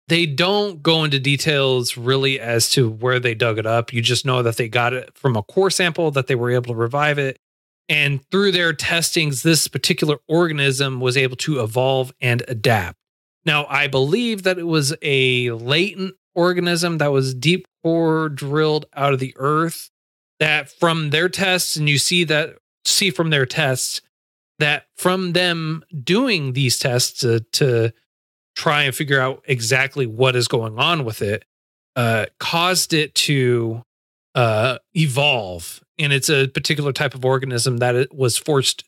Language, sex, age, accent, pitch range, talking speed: English, male, 30-49, American, 125-160 Hz, 170 wpm